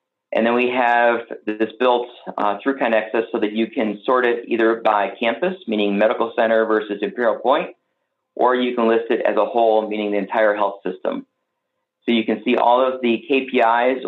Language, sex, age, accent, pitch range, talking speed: English, male, 40-59, American, 105-120 Hz, 190 wpm